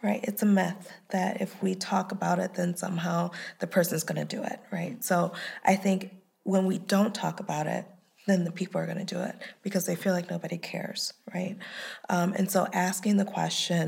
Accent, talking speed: American, 210 wpm